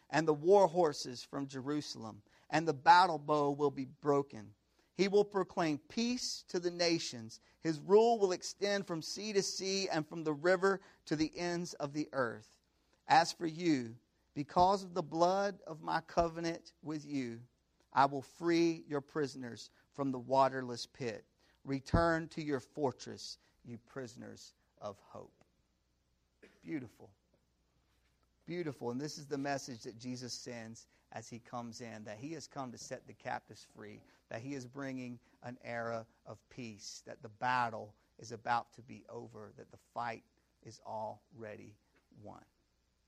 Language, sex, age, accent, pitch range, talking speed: English, male, 50-69, American, 115-165 Hz, 155 wpm